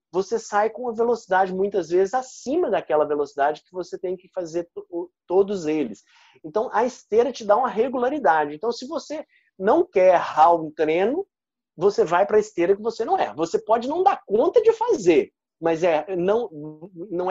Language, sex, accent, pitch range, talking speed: Portuguese, male, Brazilian, 175-280 Hz, 175 wpm